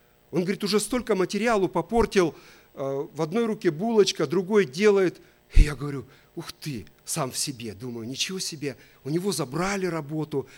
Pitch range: 140-200 Hz